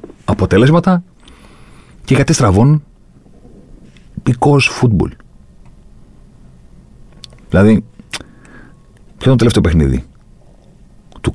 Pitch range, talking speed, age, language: 70-115 Hz, 70 wpm, 50-69, Greek